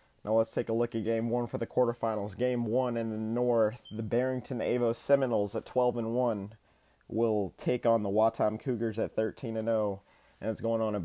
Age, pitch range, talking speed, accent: 30-49, 110-125 Hz, 210 wpm, American